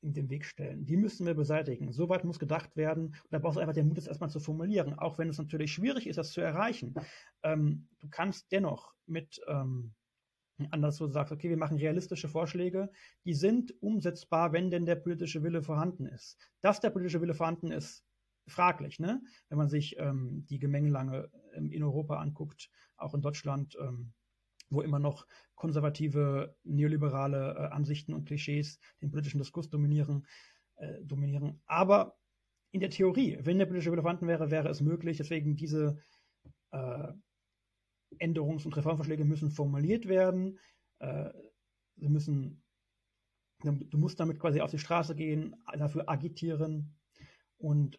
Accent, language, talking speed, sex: German, German, 155 wpm, male